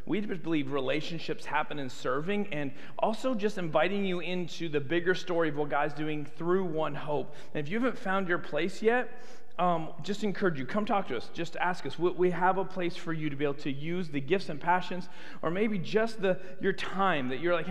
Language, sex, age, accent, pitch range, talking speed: English, male, 40-59, American, 155-205 Hz, 220 wpm